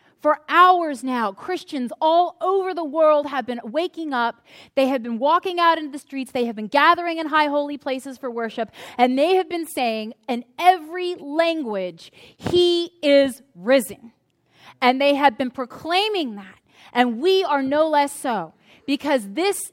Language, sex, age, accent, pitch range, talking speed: English, female, 30-49, American, 245-315 Hz, 165 wpm